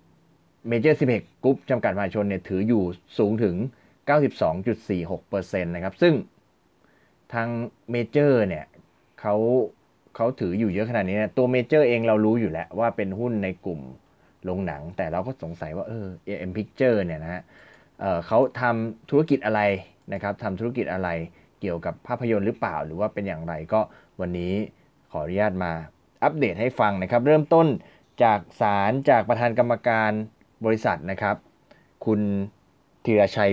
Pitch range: 95-120 Hz